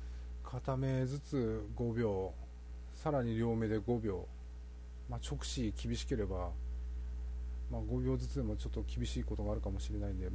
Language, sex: Japanese, male